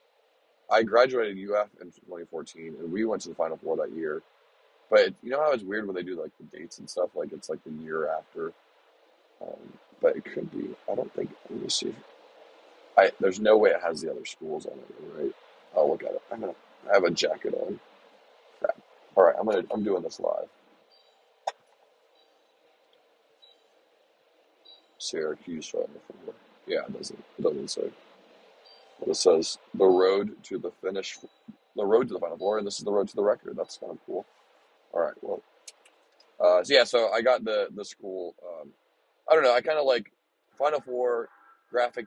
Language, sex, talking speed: English, male, 190 wpm